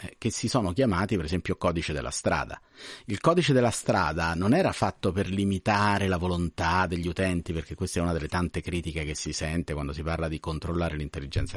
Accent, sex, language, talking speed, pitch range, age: native, male, Italian, 195 wpm, 85-125 Hz, 40-59